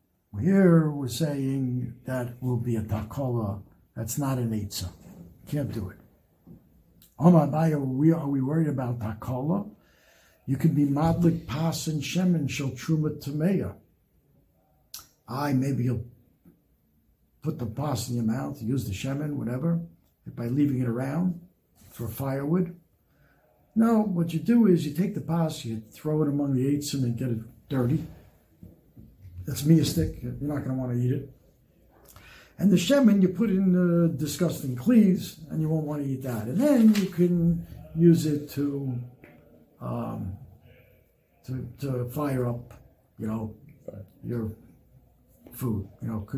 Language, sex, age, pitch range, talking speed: English, male, 60-79, 120-160 Hz, 140 wpm